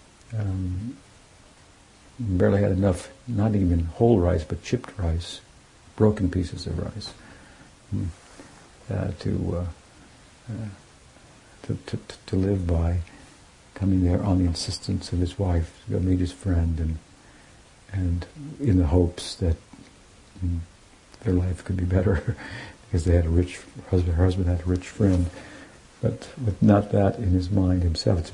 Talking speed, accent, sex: 150 wpm, American, male